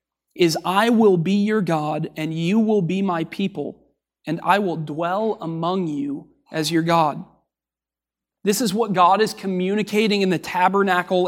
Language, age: English, 30-49